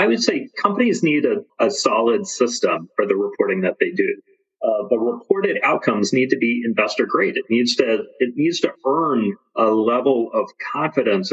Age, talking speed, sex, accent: 40-59, 180 wpm, male, American